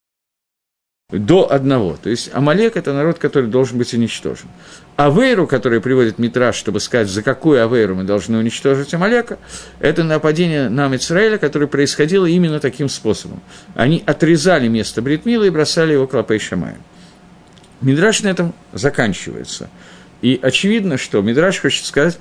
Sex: male